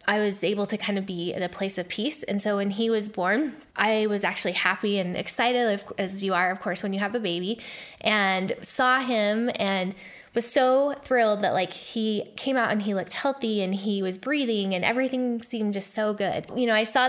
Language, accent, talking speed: English, American, 225 wpm